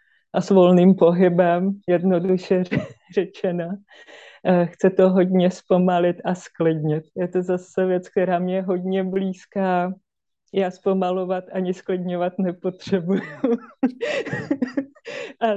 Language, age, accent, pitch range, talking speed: Czech, 30-49, native, 185-200 Hz, 105 wpm